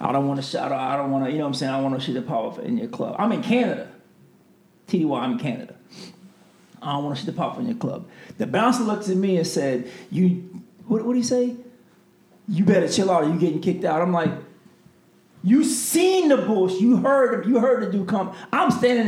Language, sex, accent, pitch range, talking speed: English, male, American, 160-235 Hz, 240 wpm